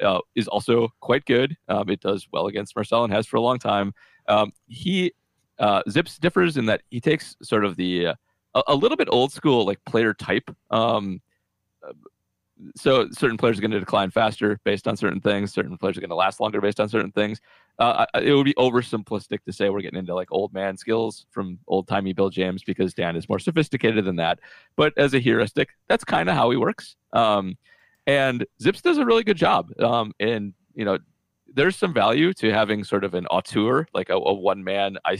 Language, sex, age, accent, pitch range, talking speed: English, male, 30-49, American, 95-120 Hz, 210 wpm